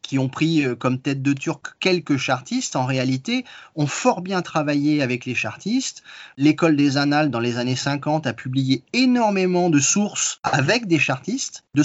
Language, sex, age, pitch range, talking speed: French, male, 30-49, 130-165 Hz, 170 wpm